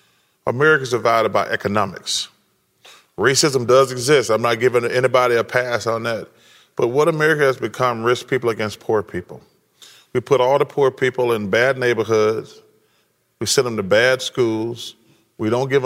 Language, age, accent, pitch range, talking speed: English, 40-59, American, 110-125 Hz, 165 wpm